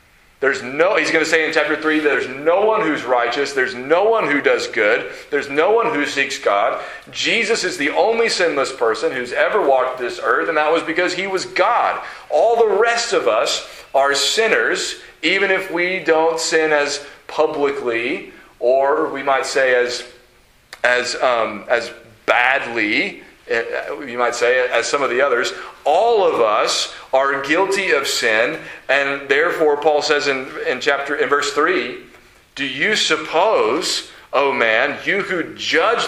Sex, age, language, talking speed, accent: male, 40-59, English, 170 wpm, American